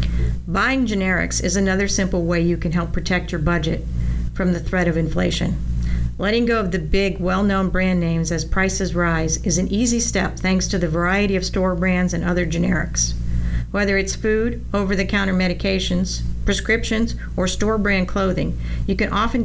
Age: 50-69